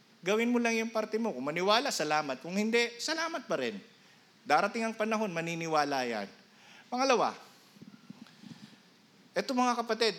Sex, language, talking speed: male, Filipino, 135 wpm